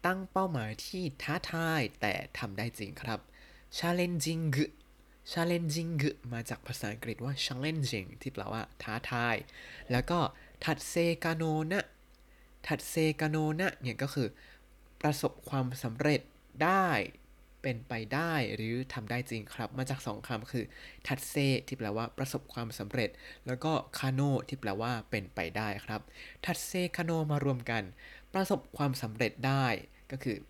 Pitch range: 120-150 Hz